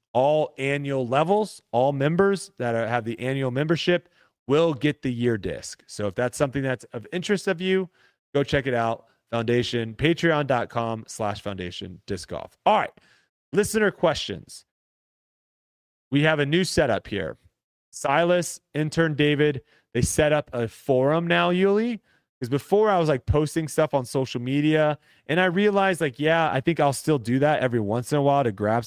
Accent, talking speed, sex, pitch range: American, 170 wpm, male, 120-155 Hz